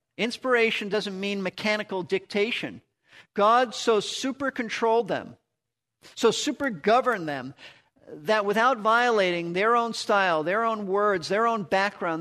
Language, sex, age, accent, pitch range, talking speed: English, male, 50-69, American, 165-215 Hz, 130 wpm